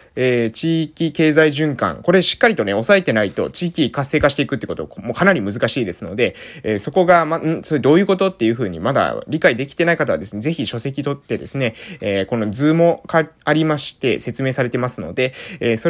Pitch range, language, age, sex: 125-170 Hz, Japanese, 20-39, male